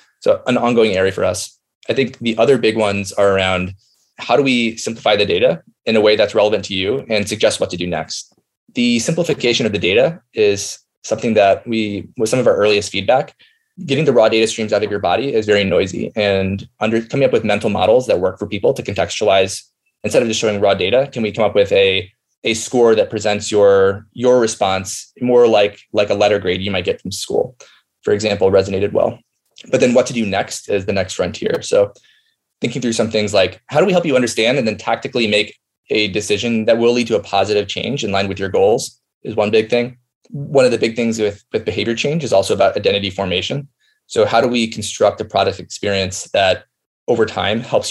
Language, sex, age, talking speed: English, male, 20-39, 220 wpm